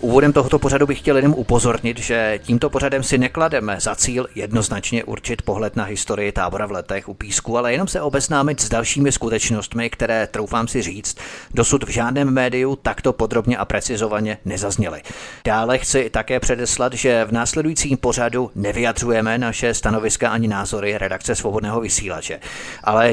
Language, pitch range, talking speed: Czech, 110-130 Hz, 160 wpm